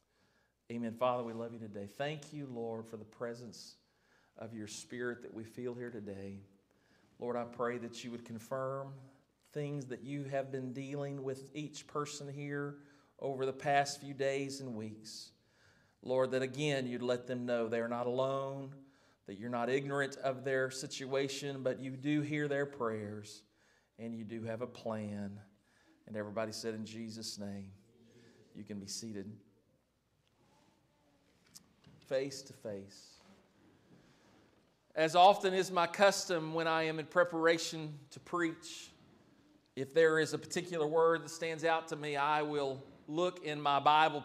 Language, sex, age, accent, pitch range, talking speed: English, male, 40-59, American, 115-150 Hz, 155 wpm